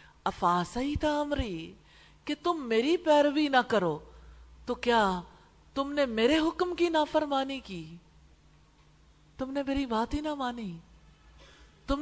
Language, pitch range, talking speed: English, 180-280 Hz, 140 wpm